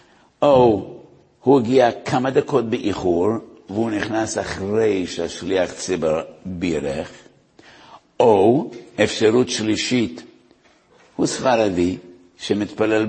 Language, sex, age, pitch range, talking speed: English, male, 60-79, 90-110 Hz, 85 wpm